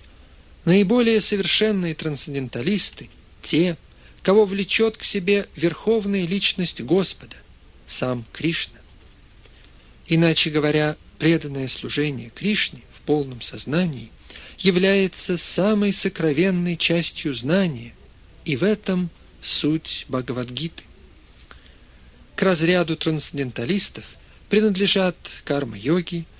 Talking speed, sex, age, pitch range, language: 85 wpm, male, 50-69, 120-185 Hz, Russian